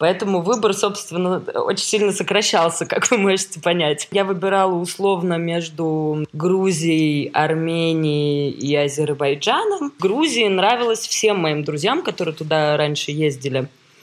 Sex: female